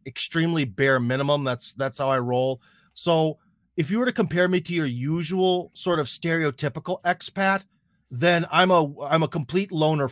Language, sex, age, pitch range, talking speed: English, male, 30-49, 135-180 Hz, 170 wpm